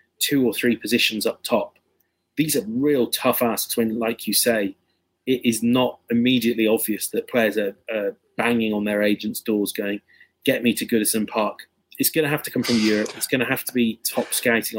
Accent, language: British, English